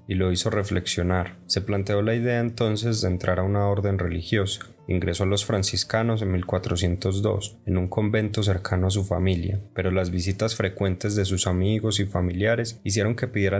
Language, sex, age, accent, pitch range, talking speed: Spanish, male, 20-39, Colombian, 90-105 Hz, 175 wpm